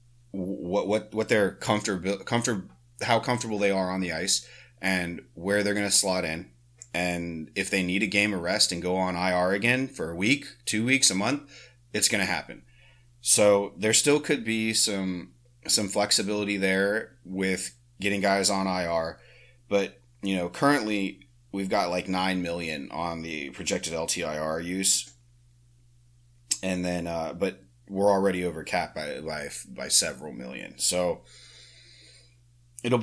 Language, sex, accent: English, male, American